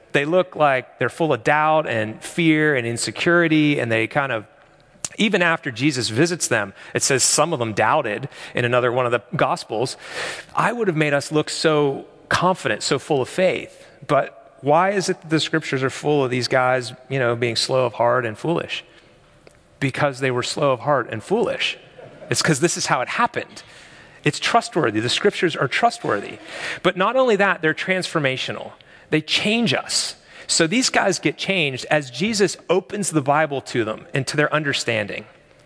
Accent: American